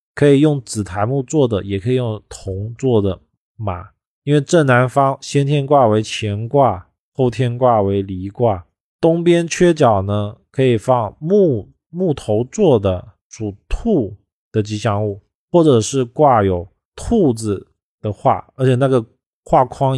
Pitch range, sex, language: 100-135 Hz, male, Chinese